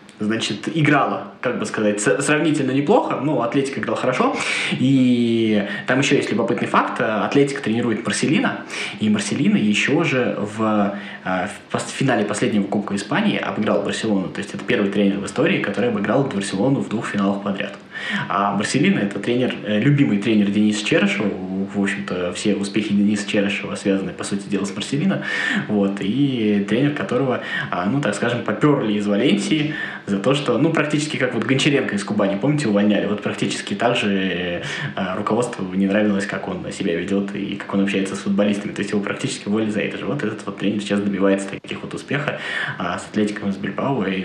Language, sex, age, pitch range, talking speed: Russian, male, 20-39, 100-130 Hz, 175 wpm